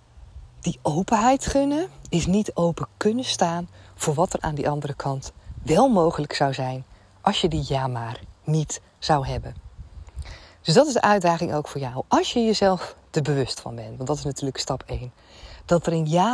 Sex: female